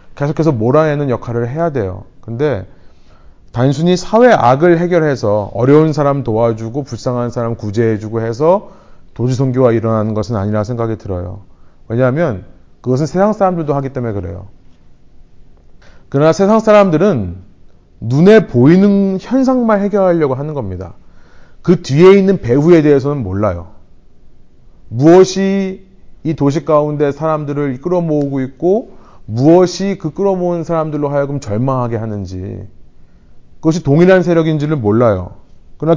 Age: 30-49